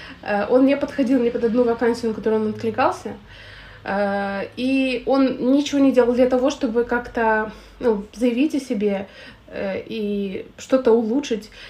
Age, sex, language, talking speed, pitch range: 20-39, female, Russian, 140 wpm, 210-250 Hz